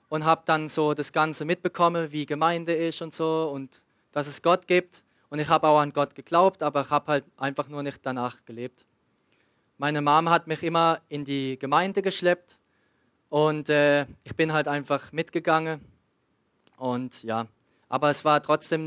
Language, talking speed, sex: German, 175 wpm, male